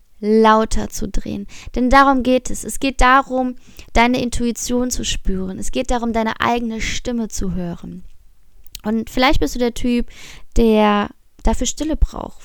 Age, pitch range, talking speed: 20-39, 195-245 Hz, 155 wpm